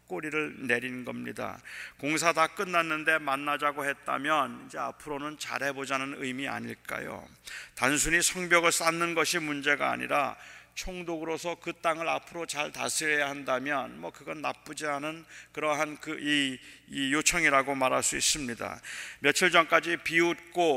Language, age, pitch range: Korean, 40-59, 140-170 Hz